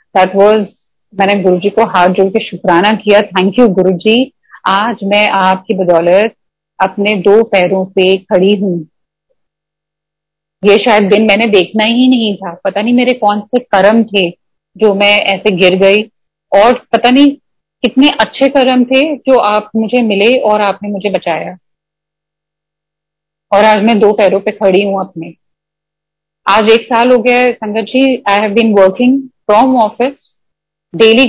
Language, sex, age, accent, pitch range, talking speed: Hindi, female, 30-49, native, 185-230 Hz, 135 wpm